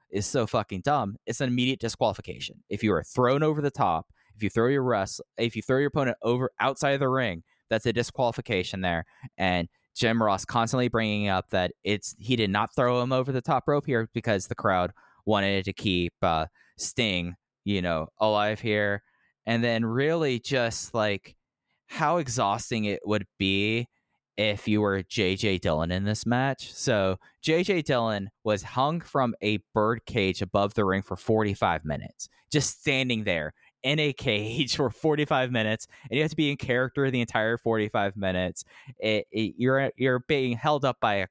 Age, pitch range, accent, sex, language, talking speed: 20-39, 100-130 Hz, American, male, English, 180 wpm